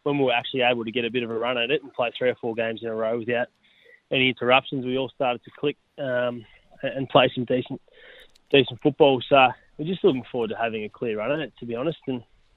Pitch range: 120-135 Hz